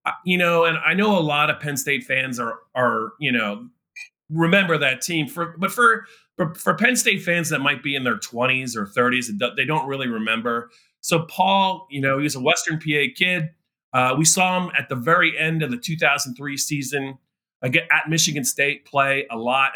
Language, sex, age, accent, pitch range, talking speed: English, male, 30-49, American, 130-170 Hz, 200 wpm